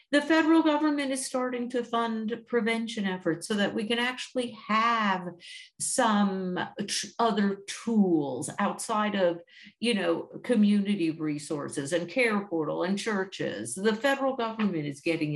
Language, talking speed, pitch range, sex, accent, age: English, 135 wpm, 175-235 Hz, female, American, 50-69